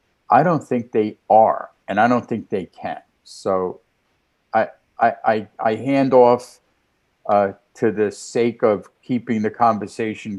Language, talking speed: English, 150 wpm